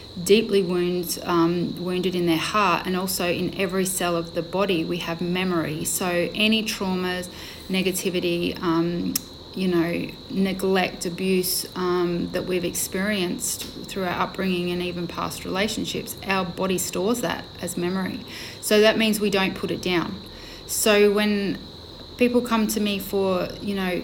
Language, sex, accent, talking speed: English, female, Australian, 150 wpm